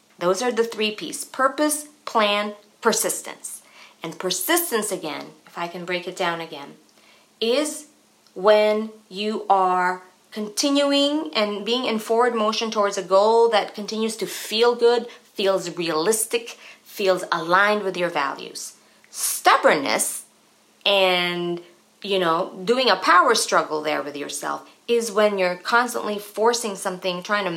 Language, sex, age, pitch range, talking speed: English, female, 30-49, 160-210 Hz, 135 wpm